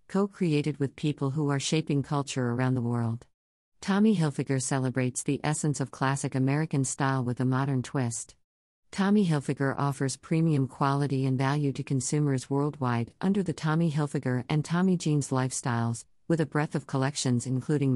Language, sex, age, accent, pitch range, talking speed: English, female, 50-69, American, 130-155 Hz, 155 wpm